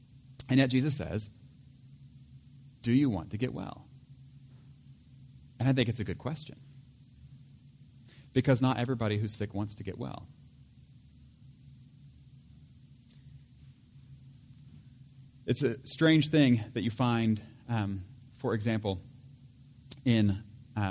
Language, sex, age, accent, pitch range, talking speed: English, male, 40-59, American, 115-135 Hz, 110 wpm